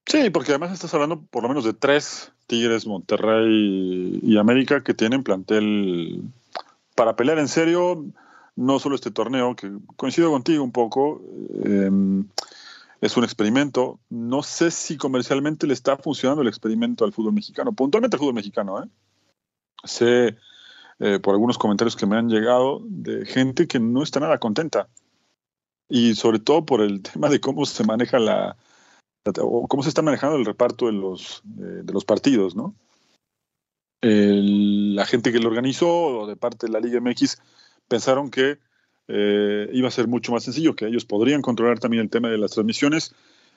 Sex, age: male, 40-59